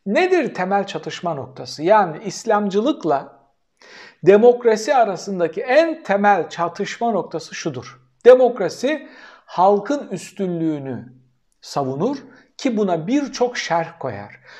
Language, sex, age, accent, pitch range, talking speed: Turkish, male, 60-79, native, 155-220 Hz, 90 wpm